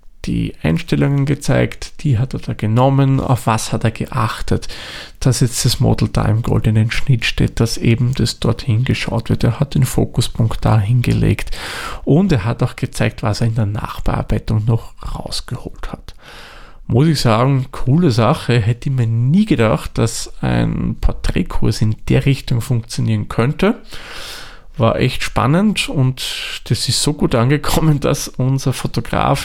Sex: male